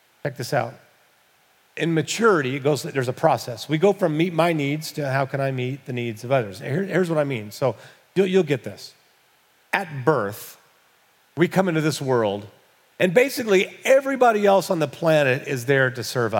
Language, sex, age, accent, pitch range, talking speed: English, male, 40-59, American, 125-190 Hz, 195 wpm